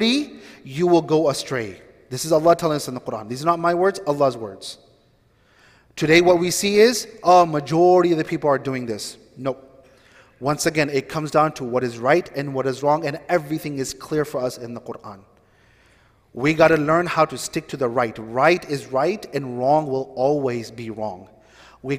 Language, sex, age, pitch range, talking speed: English, male, 30-49, 130-150 Hz, 205 wpm